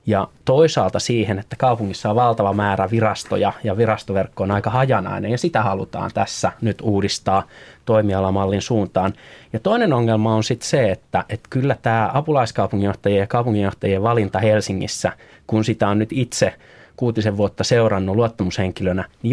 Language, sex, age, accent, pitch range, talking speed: Finnish, male, 20-39, native, 95-115 Hz, 145 wpm